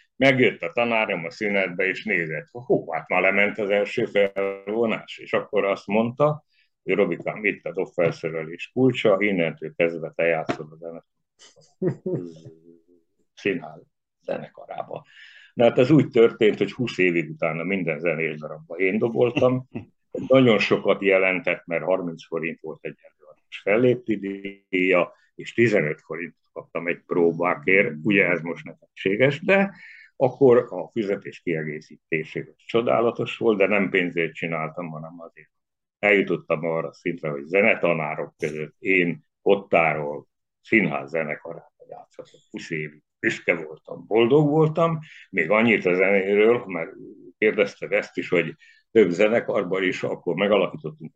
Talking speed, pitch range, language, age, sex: 130 wpm, 85-120 Hz, Hungarian, 60-79, male